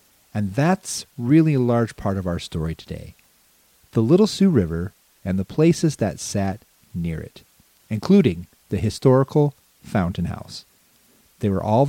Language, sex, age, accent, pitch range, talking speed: English, male, 40-59, American, 95-135 Hz, 145 wpm